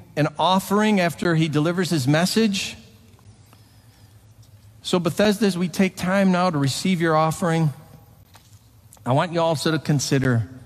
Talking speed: 135 wpm